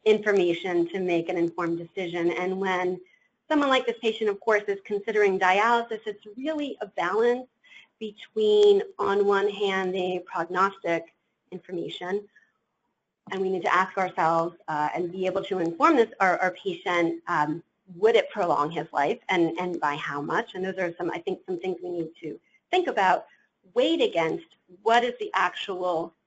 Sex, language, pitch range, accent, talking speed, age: female, English, 175-240 Hz, American, 170 wpm, 40-59